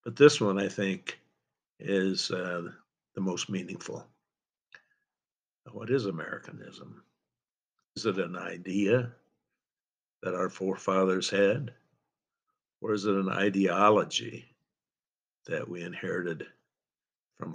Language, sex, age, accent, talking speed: English, male, 60-79, American, 105 wpm